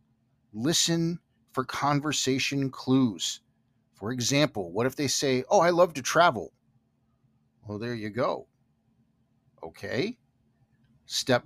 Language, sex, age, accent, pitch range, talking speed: English, male, 50-69, American, 120-150 Hz, 110 wpm